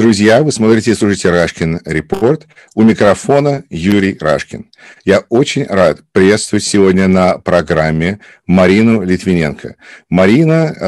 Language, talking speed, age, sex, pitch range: English, 115 wpm, 50-69, male, 90-120 Hz